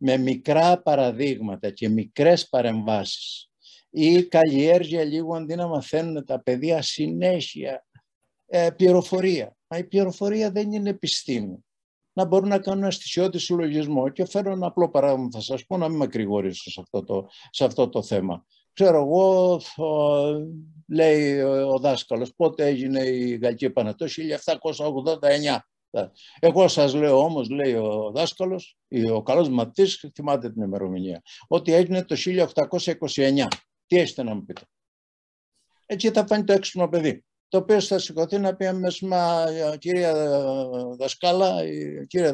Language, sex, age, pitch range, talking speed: Greek, male, 60-79, 135-180 Hz, 130 wpm